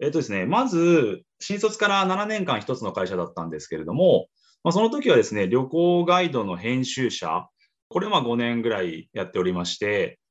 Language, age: Japanese, 20-39